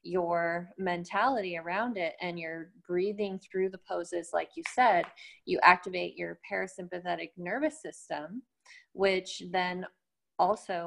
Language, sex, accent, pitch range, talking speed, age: English, female, American, 175-215 Hz, 120 wpm, 20-39